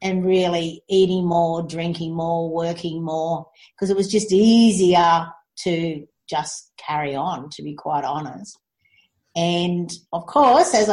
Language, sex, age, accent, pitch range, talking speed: English, female, 50-69, Australian, 160-205 Hz, 135 wpm